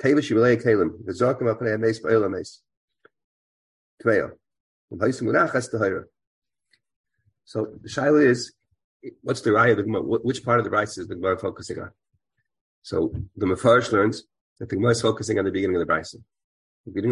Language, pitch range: English, 110-125 Hz